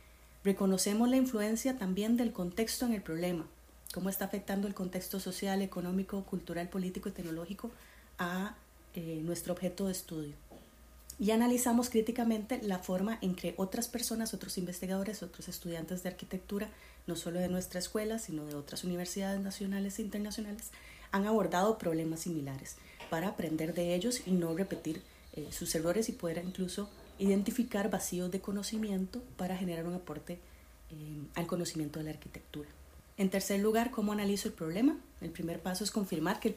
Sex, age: female, 30-49